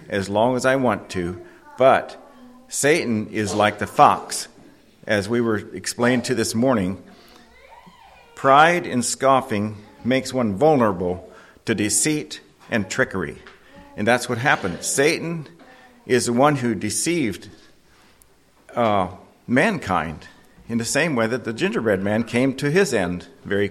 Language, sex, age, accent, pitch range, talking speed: English, male, 50-69, American, 110-150 Hz, 135 wpm